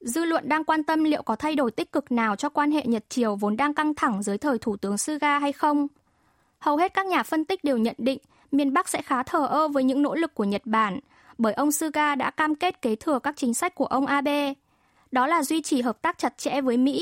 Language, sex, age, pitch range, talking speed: Vietnamese, female, 10-29, 240-305 Hz, 255 wpm